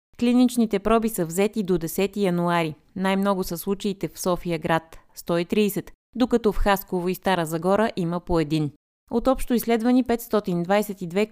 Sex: female